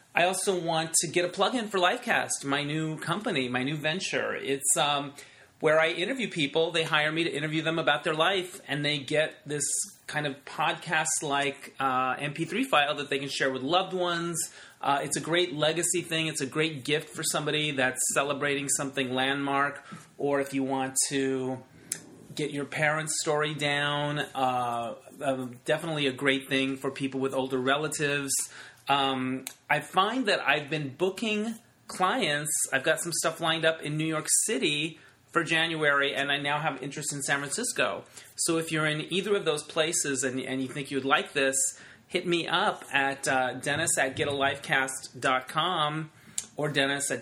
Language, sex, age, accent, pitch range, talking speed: English, male, 30-49, American, 135-160 Hz, 175 wpm